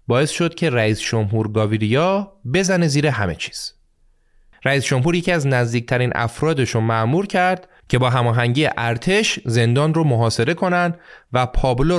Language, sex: Persian, male